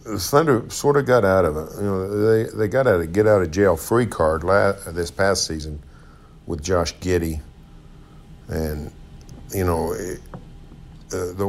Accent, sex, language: American, male, English